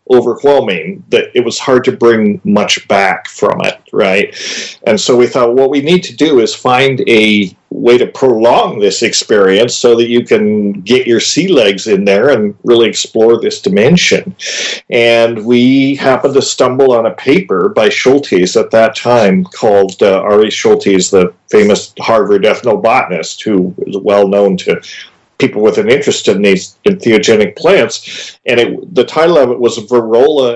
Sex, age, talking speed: male, 40-59, 170 wpm